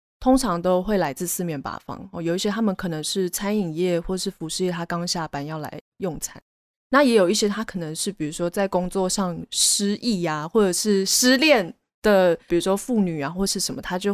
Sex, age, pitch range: female, 20-39, 175-230 Hz